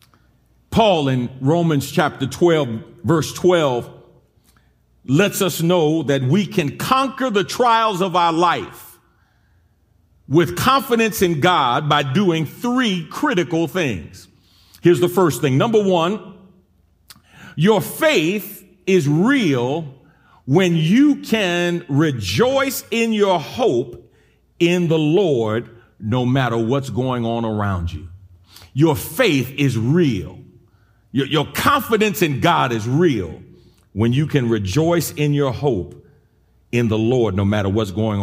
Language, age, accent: English, 40-59, American